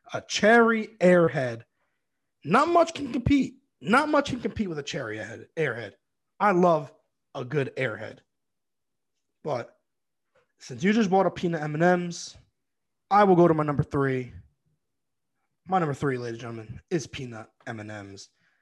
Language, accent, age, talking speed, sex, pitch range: English, American, 20-39, 140 wpm, male, 130-170 Hz